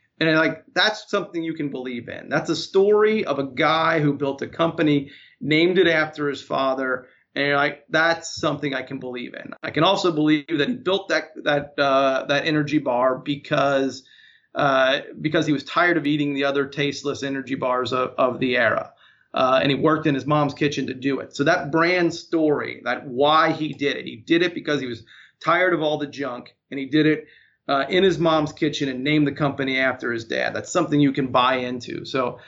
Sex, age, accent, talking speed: male, 30-49, American, 210 wpm